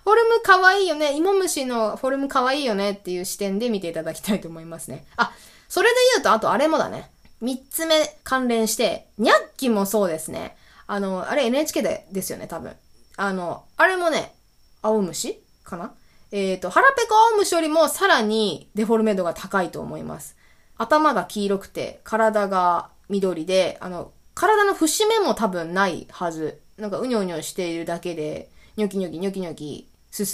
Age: 20-39